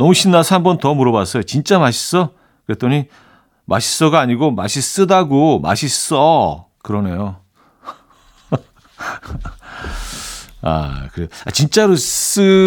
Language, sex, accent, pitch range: Korean, male, native, 100-140 Hz